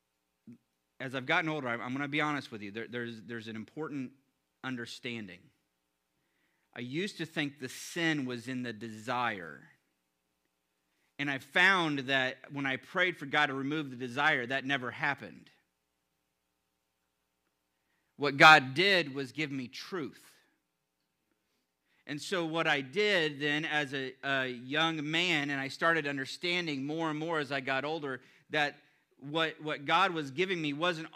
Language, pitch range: English, 130-165 Hz